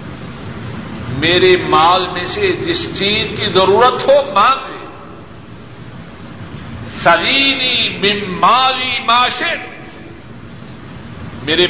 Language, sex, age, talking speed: Urdu, male, 60-79, 70 wpm